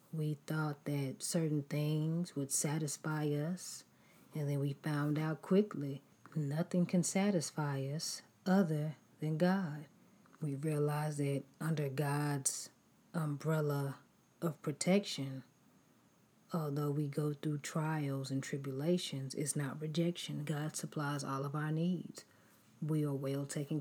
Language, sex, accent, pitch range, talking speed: English, female, American, 145-170 Hz, 125 wpm